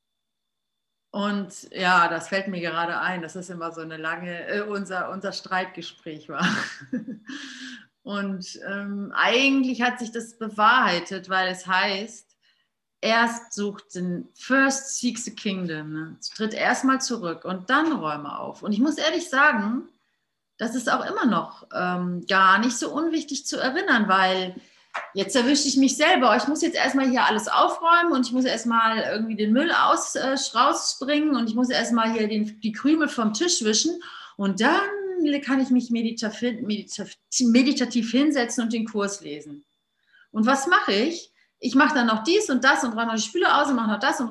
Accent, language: German, German